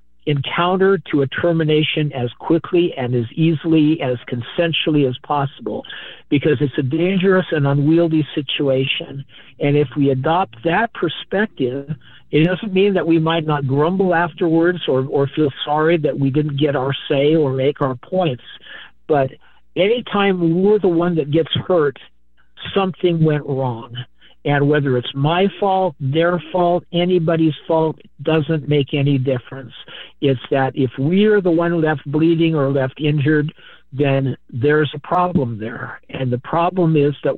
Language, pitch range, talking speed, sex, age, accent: English, 135-170 Hz, 150 wpm, male, 60-79, American